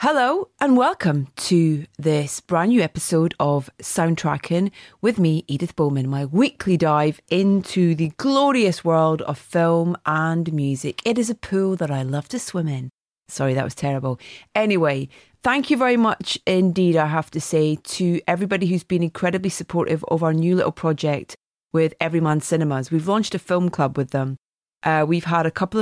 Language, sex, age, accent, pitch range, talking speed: English, female, 30-49, British, 150-180 Hz, 175 wpm